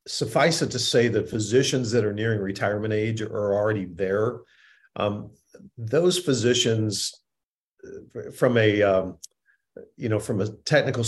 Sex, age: male, 50-69